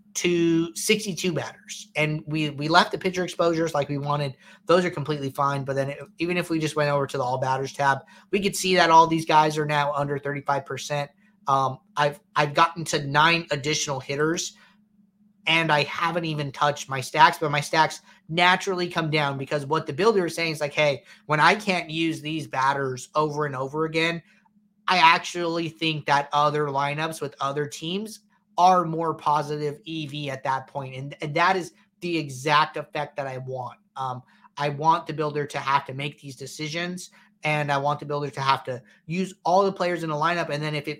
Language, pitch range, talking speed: English, 145-175 Hz, 205 wpm